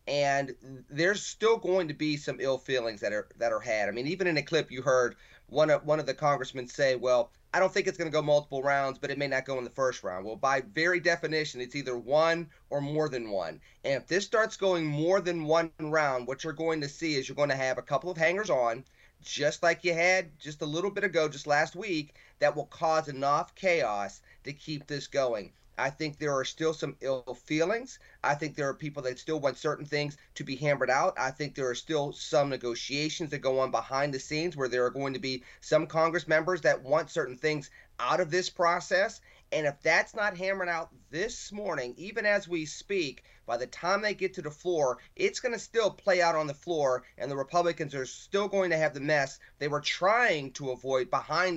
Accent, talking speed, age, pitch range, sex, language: American, 235 wpm, 30-49, 135-170 Hz, male, English